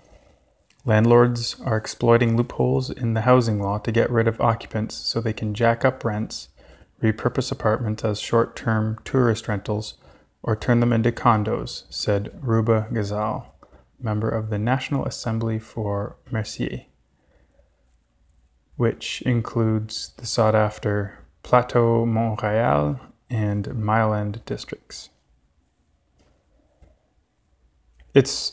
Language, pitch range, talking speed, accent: English, 100-120 Hz, 110 wpm, American